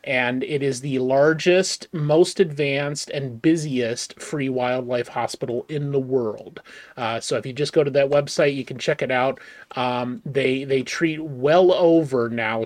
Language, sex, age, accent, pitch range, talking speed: English, male, 30-49, American, 125-155 Hz, 170 wpm